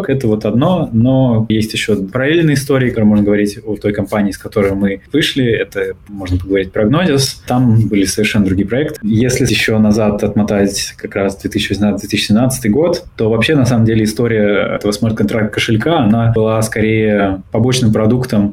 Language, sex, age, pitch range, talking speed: Russian, male, 20-39, 105-120 Hz, 165 wpm